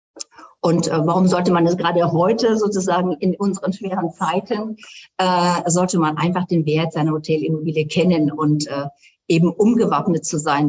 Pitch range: 160-185 Hz